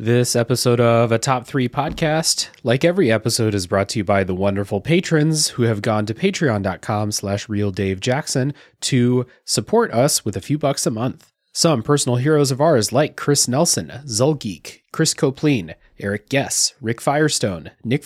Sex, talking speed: male, 165 wpm